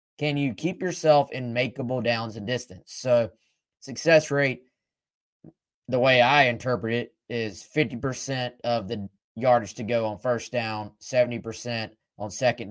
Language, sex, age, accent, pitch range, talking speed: English, male, 20-39, American, 110-140 Hz, 140 wpm